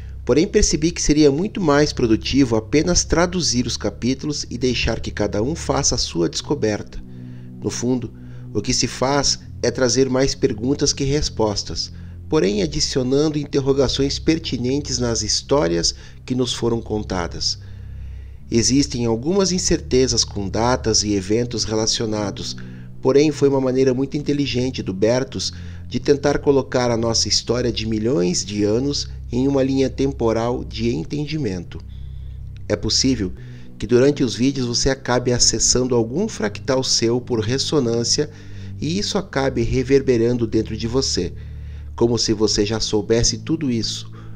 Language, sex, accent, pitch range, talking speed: Portuguese, male, Brazilian, 105-135 Hz, 140 wpm